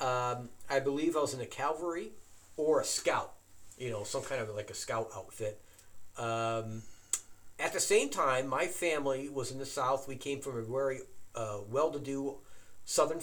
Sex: male